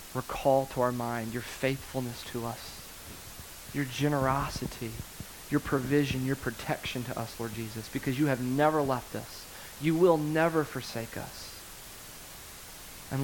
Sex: male